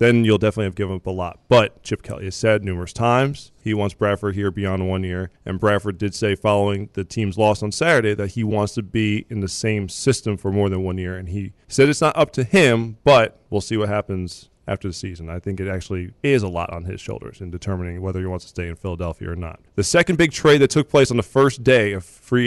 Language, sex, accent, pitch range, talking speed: English, male, American, 100-120 Hz, 255 wpm